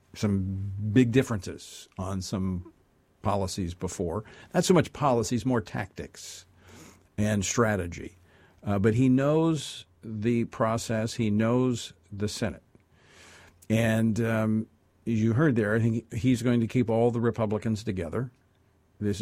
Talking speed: 130 wpm